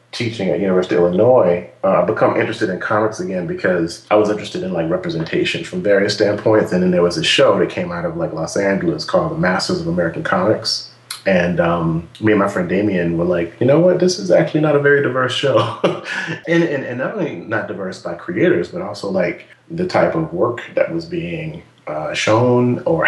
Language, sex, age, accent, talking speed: English, male, 30-49, American, 205 wpm